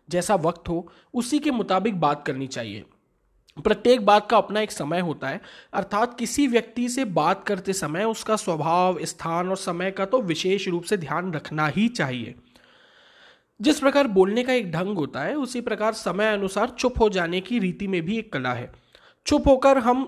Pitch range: 175-240 Hz